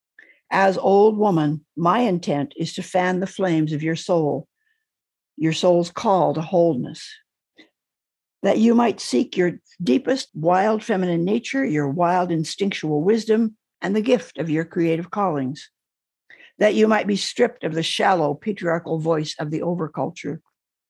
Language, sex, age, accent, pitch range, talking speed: English, female, 60-79, American, 160-215 Hz, 145 wpm